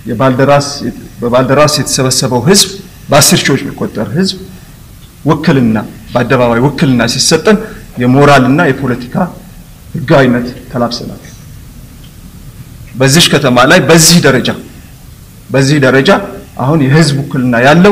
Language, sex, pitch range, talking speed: English, male, 120-155 Hz, 45 wpm